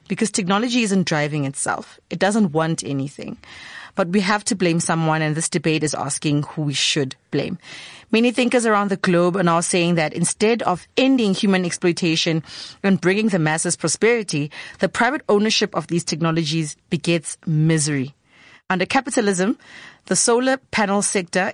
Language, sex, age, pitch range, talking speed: English, female, 30-49, 170-215 Hz, 160 wpm